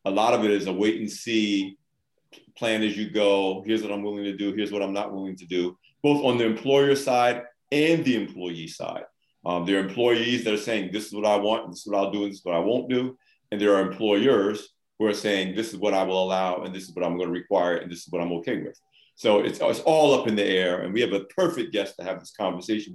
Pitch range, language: 95-120 Hz, English